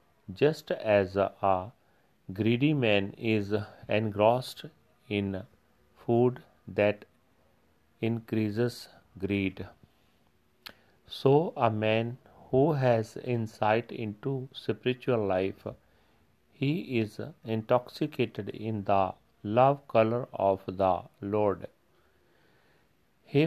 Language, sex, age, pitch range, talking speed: Punjabi, male, 40-59, 100-125 Hz, 80 wpm